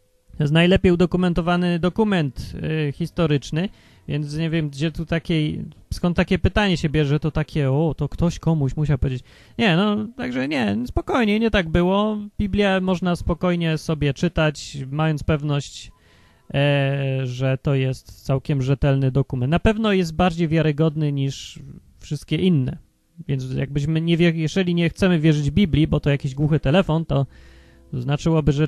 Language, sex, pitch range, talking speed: Polish, male, 135-180 Hz, 150 wpm